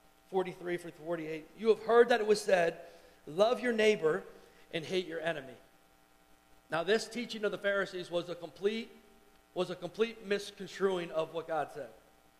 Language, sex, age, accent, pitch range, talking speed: English, male, 40-59, American, 170-210 Hz, 165 wpm